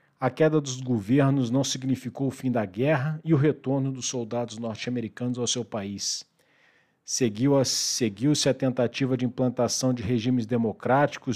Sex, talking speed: male, 145 wpm